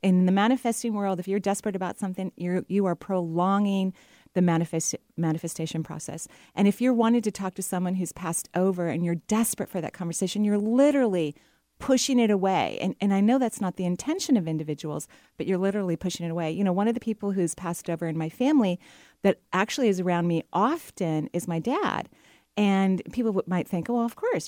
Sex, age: female, 40-59